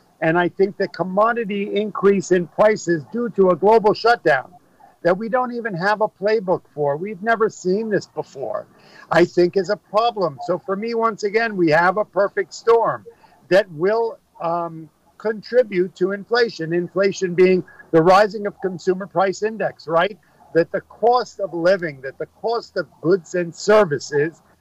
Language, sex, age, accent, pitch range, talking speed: German, male, 50-69, American, 170-215 Hz, 165 wpm